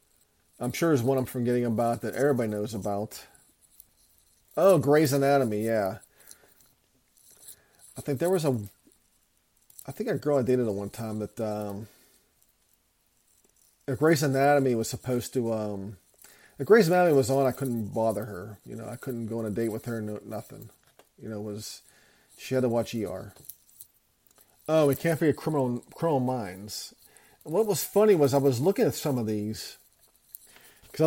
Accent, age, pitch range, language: American, 40-59, 115-155 Hz, English